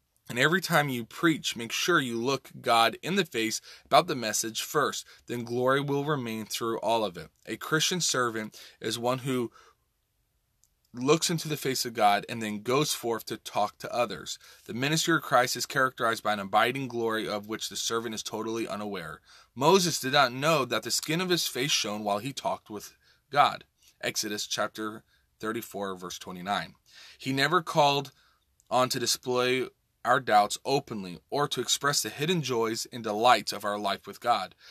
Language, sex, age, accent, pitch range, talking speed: English, male, 20-39, American, 110-140 Hz, 180 wpm